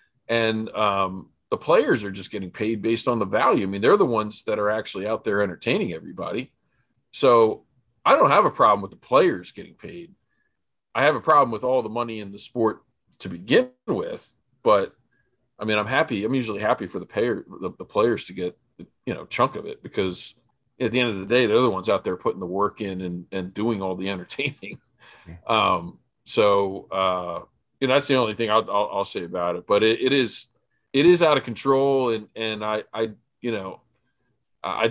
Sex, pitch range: male, 95-115 Hz